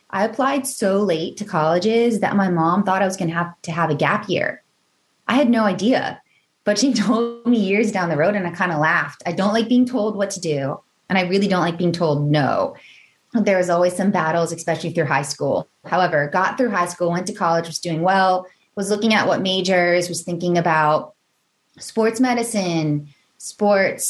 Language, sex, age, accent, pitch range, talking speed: English, female, 20-39, American, 160-205 Hz, 210 wpm